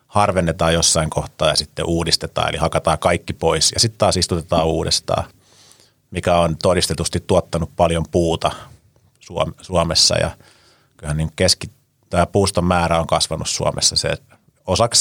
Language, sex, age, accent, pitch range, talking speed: Finnish, male, 30-49, native, 85-100 Hz, 135 wpm